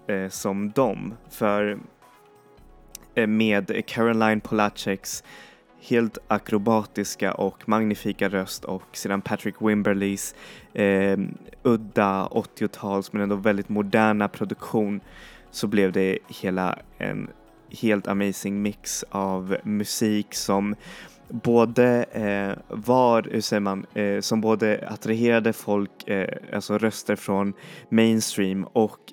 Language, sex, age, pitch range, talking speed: Swedish, male, 20-39, 100-115 Hz, 105 wpm